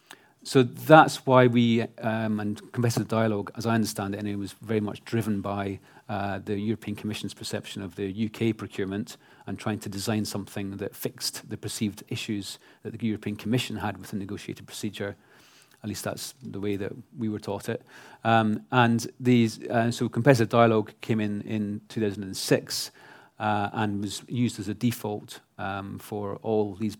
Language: English